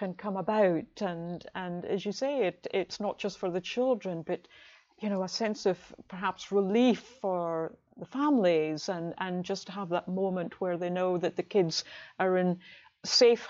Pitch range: 185-220 Hz